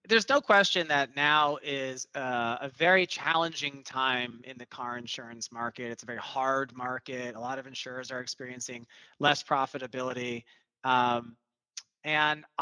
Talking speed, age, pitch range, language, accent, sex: 145 wpm, 30-49, 130-160 Hz, English, American, male